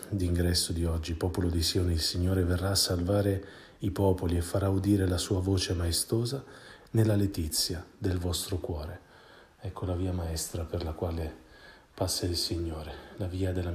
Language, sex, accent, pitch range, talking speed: Italian, male, native, 85-100 Hz, 165 wpm